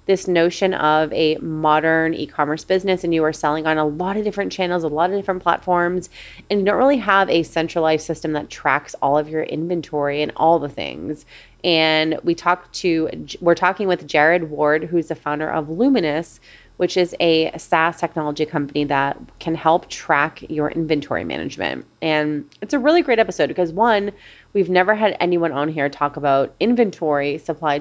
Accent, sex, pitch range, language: American, female, 155-185 Hz, English